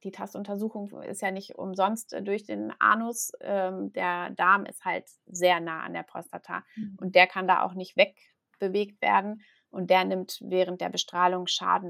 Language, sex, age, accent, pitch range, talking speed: German, female, 30-49, German, 180-210 Hz, 165 wpm